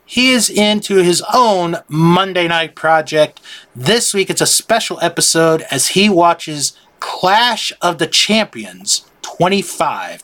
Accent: American